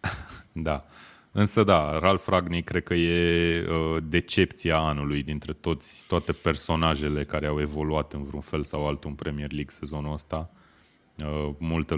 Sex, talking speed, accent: male, 150 wpm, native